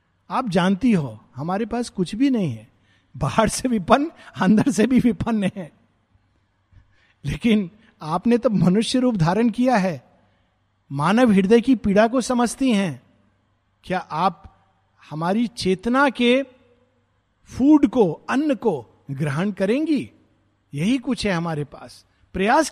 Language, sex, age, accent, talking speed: Hindi, male, 50-69, native, 130 wpm